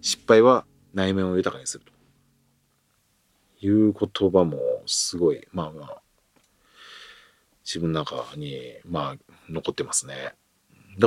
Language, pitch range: Japanese, 85-105 Hz